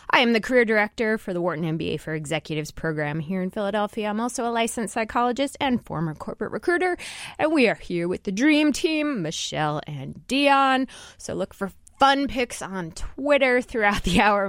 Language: English